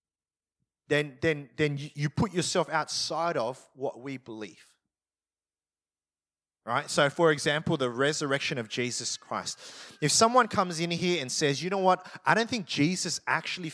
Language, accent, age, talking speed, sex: English, Australian, 20-39, 155 wpm, male